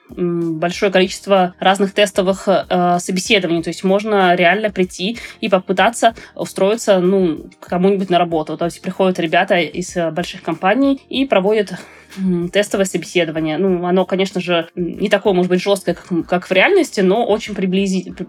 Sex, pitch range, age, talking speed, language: female, 180-205 Hz, 20-39, 150 wpm, Russian